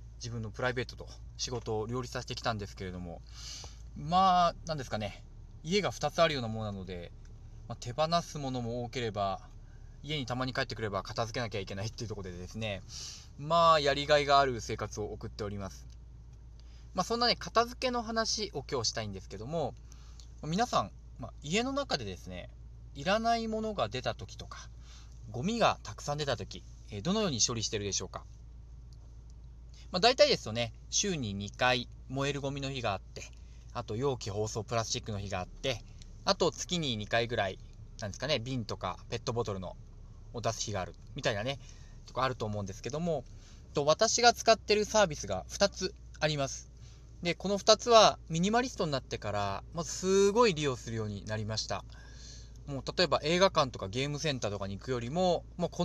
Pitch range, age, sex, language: 100-150 Hz, 20-39, male, Japanese